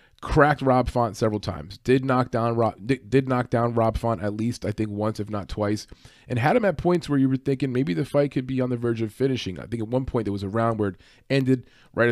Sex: male